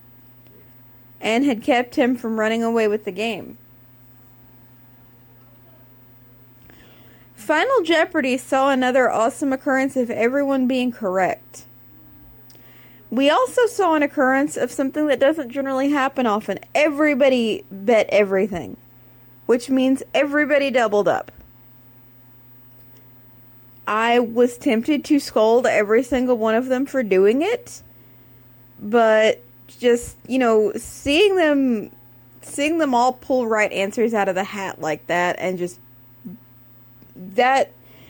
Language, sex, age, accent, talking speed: English, female, 30-49, American, 115 wpm